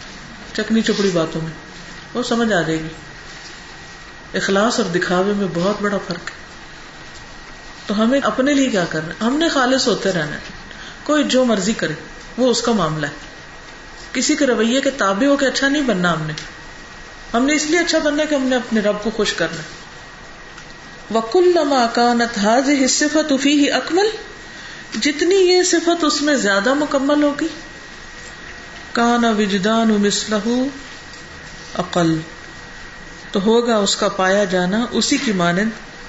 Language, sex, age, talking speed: Urdu, female, 40-59, 150 wpm